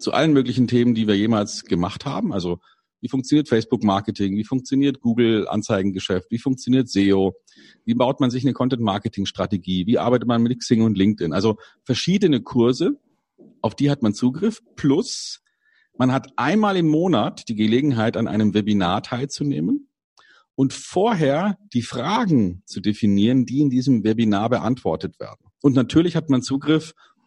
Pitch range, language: 105-140 Hz, German